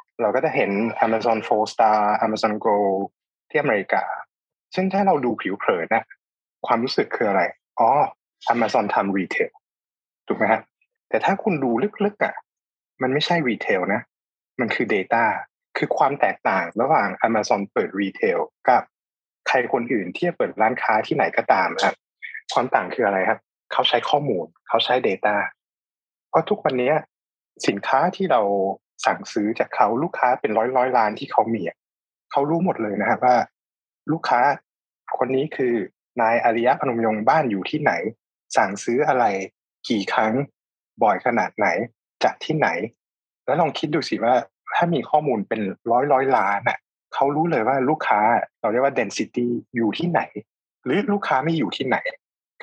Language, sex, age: Thai, male, 20-39